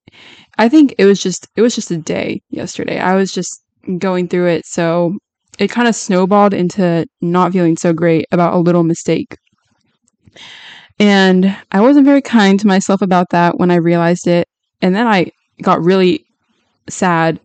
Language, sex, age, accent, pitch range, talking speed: English, female, 10-29, American, 175-215 Hz, 170 wpm